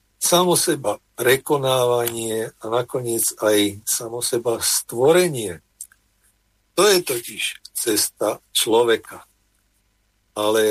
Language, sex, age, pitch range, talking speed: Slovak, male, 50-69, 100-135 Hz, 85 wpm